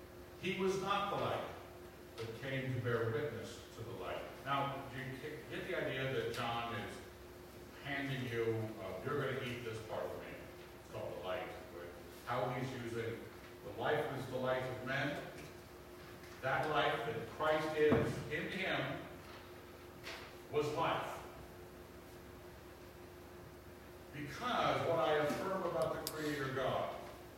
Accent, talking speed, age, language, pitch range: American, 140 wpm, 50-69, English, 90-140 Hz